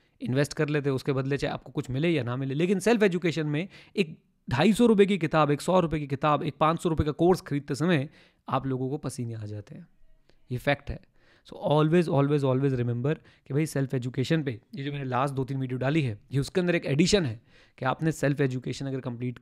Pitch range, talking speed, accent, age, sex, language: 135-165 Hz, 230 wpm, native, 30-49, male, Hindi